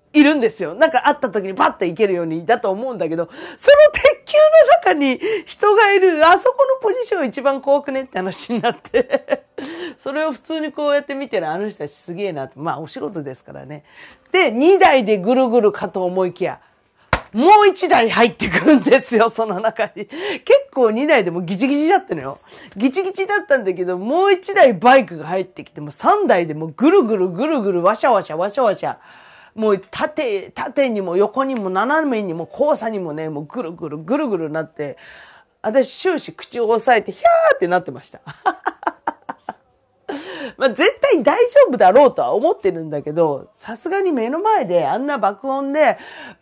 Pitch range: 190-310 Hz